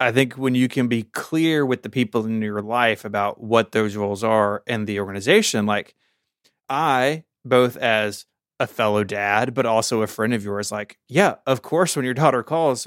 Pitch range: 105-130 Hz